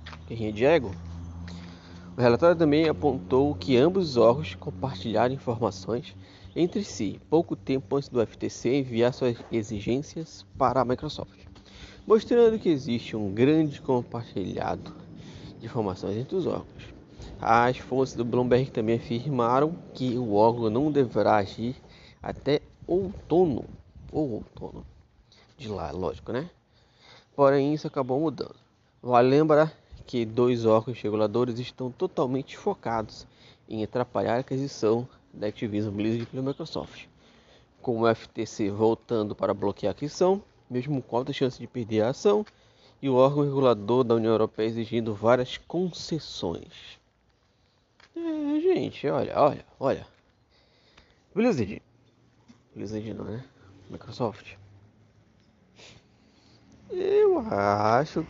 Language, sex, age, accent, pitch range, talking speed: Portuguese, male, 20-39, Brazilian, 105-135 Hz, 120 wpm